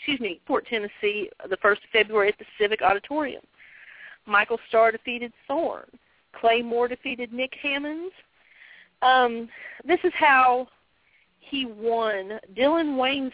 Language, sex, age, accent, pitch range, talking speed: English, female, 40-59, American, 220-265 Hz, 125 wpm